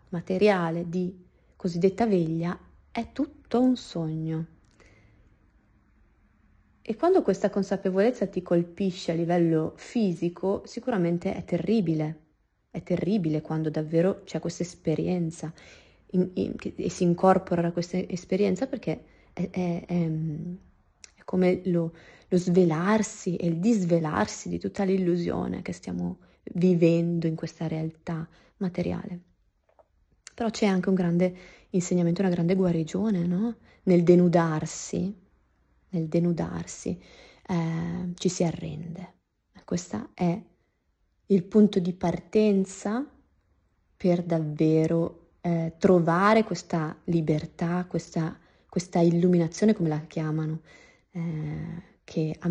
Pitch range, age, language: 160-190 Hz, 30-49, Italian